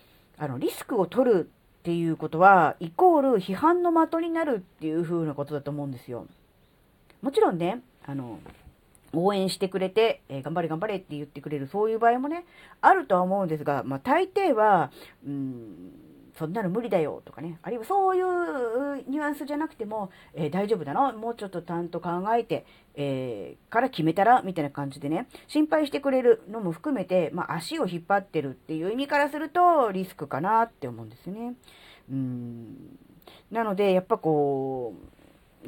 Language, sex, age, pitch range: Japanese, female, 40-59, 155-245 Hz